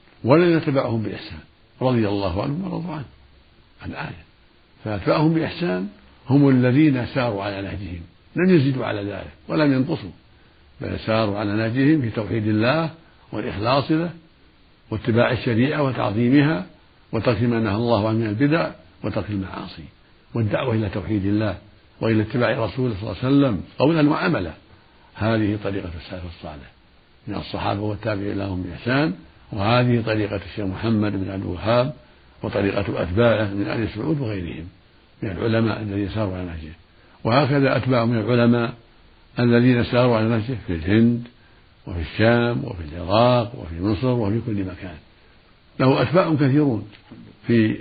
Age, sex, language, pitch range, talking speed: 60-79, male, Arabic, 100-130 Hz, 135 wpm